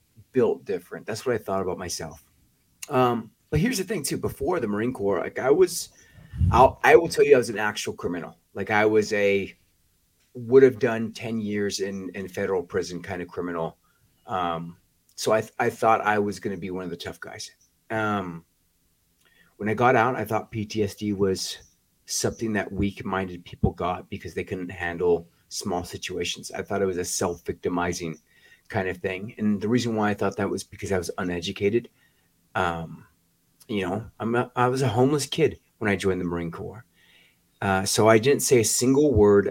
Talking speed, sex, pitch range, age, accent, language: 195 wpm, male, 90-110 Hz, 30-49, American, English